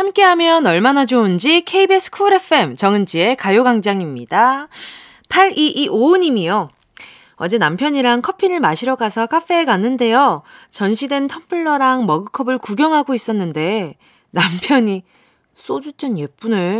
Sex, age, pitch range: female, 20-39, 215-325 Hz